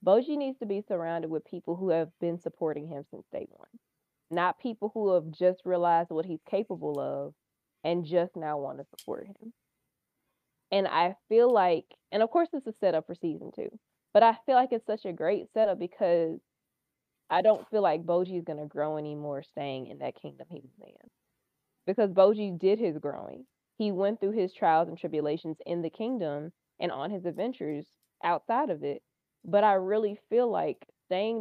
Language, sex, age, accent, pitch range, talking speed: English, female, 20-39, American, 165-210 Hz, 195 wpm